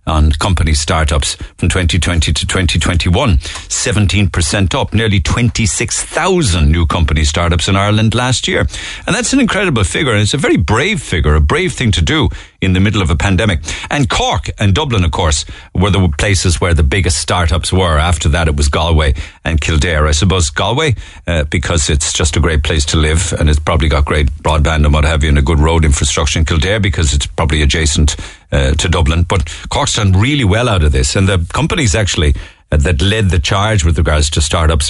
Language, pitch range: English, 80-100 Hz